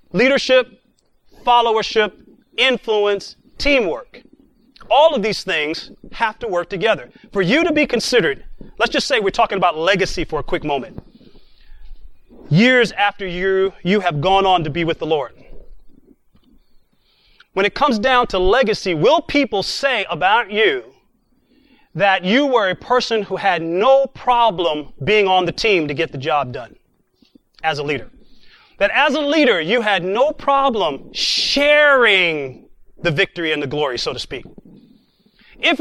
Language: English